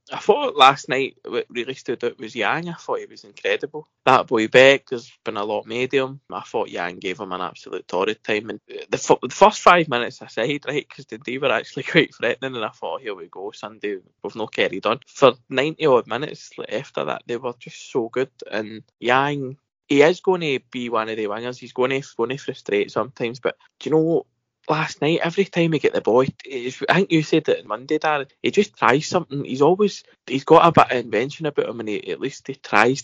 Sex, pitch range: male, 130-215 Hz